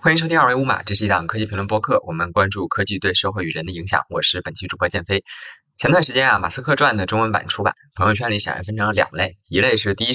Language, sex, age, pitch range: Chinese, male, 20-39, 95-135 Hz